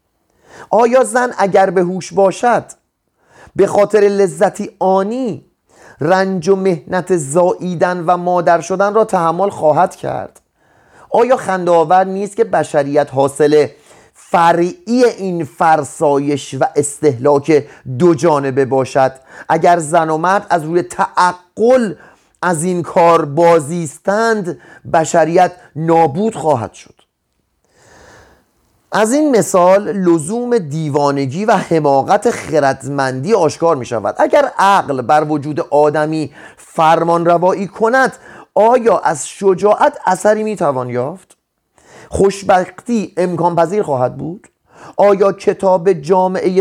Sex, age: male, 30-49